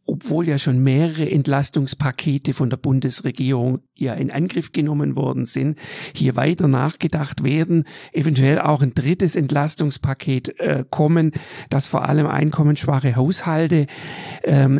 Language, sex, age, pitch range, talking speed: German, male, 50-69, 140-170 Hz, 125 wpm